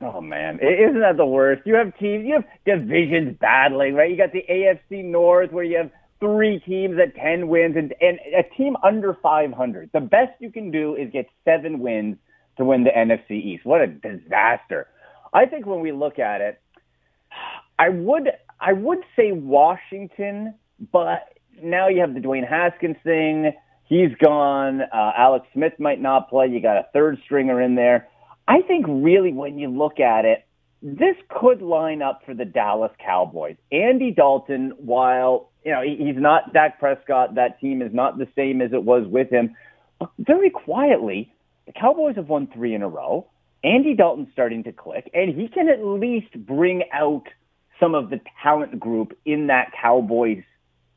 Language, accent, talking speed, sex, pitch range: English, American, 180 wpm, male, 130-200 Hz